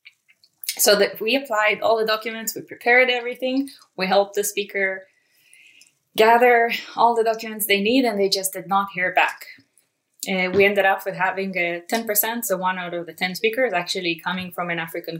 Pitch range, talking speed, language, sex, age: 185-230 Hz, 185 wpm, English, female, 10-29